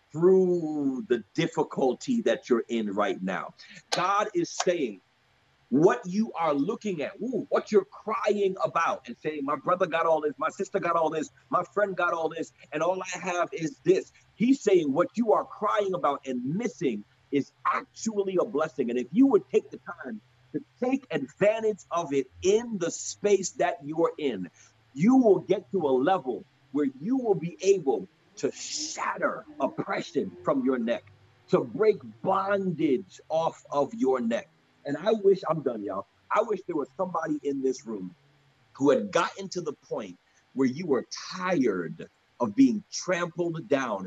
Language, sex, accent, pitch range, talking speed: English, male, American, 150-210 Hz, 170 wpm